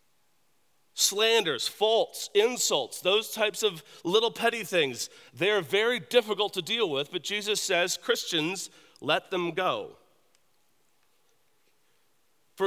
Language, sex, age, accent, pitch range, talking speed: English, male, 40-59, American, 160-220 Hz, 110 wpm